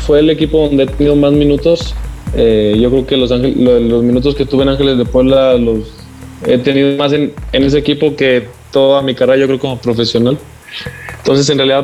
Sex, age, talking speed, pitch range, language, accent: male, 20-39, 210 wpm, 125-140 Hz, Spanish, Mexican